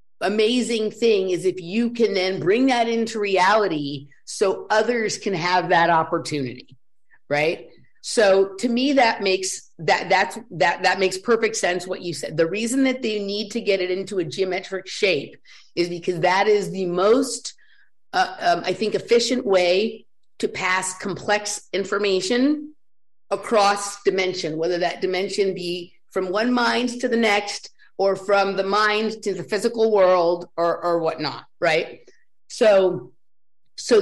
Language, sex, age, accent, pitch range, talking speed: English, female, 50-69, American, 180-230 Hz, 155 wpm